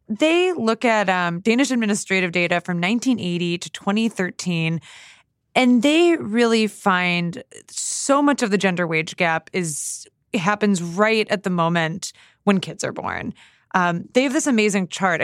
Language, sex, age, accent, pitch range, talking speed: English, female, 20-39, American, 175-220 Hz, 150 wpm